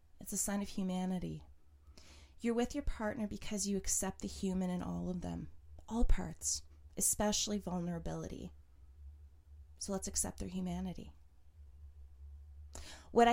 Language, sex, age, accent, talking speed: English, female, 20-39, American, 125 wpm